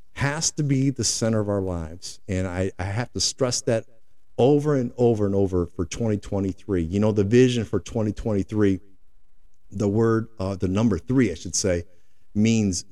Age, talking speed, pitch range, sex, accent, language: 50-69, 175 wpm, 95-125 Hz, male, American, English